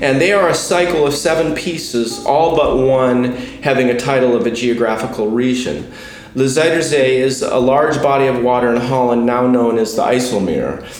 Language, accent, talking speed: English, American, 180 wpm